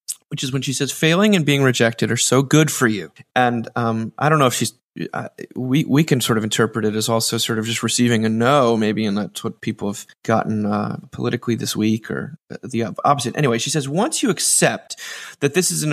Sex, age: male, 30-49